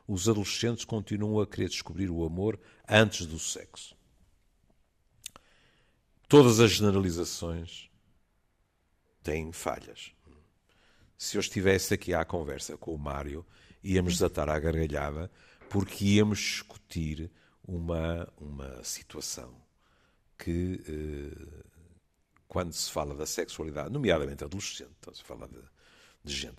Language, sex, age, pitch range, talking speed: Portuguese, male, 60-79, 80-105 Hz, 115 wpm